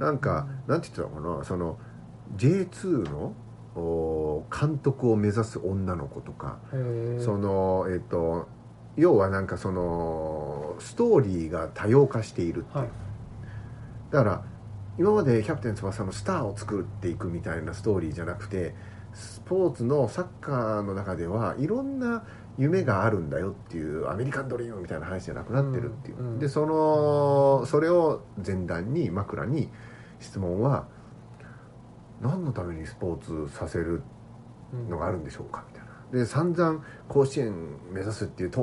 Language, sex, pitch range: Japanese, male, 95-130 Hz